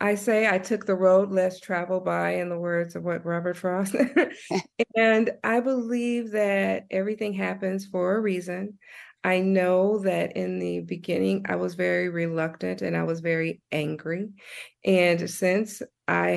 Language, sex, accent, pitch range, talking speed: English, female, American, 165-195 Hz, 160 wpm